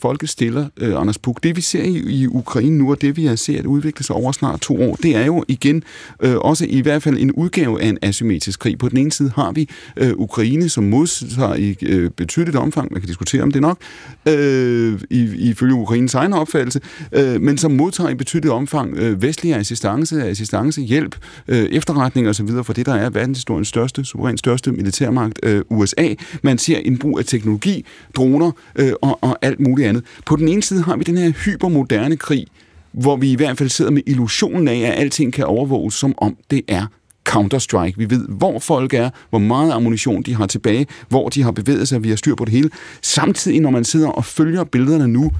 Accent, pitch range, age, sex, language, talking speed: native, 110-145 Hz, 30-49, male, Danish, 215 wpm